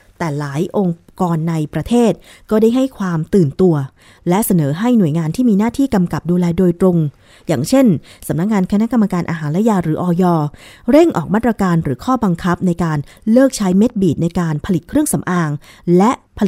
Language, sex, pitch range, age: Thai, female, 155-205 Hz, 20-39